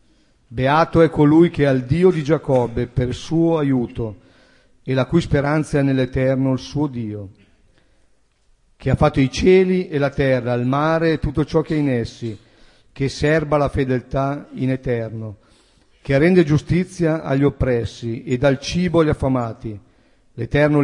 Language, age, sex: Italian, 50-69, male